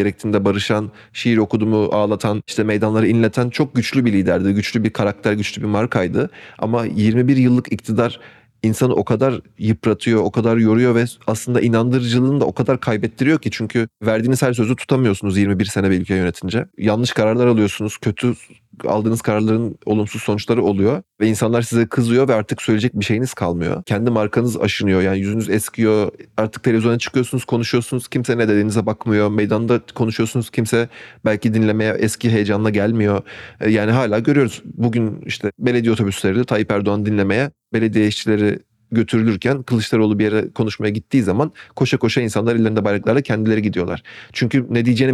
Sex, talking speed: male, 155 wpm